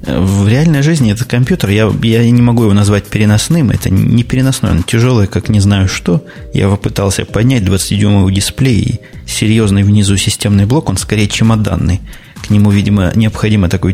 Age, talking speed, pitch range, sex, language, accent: 20-39, 170 wpm, 100-115 Hz, male, Russian, native